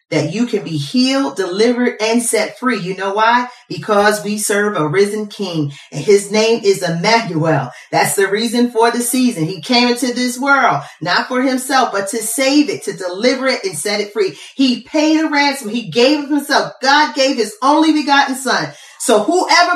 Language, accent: English, American